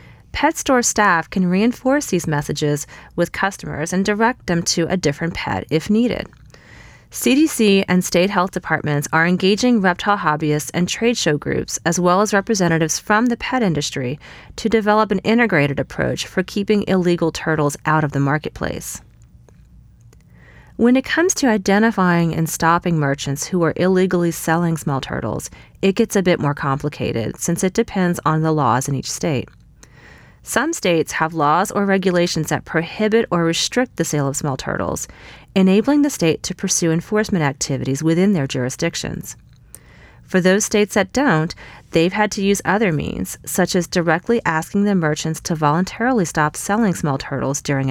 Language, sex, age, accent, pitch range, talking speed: English, female, 30-49, American, 155-205 Hz, 165 wpm